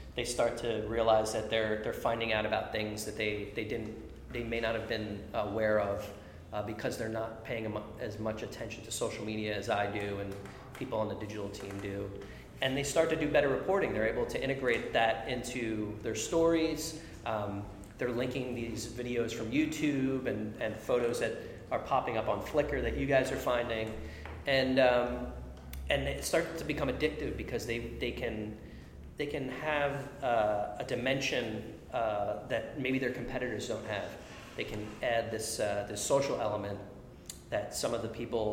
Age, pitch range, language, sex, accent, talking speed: 30-49, 105-125 Hz, English, male, American, 180 wpm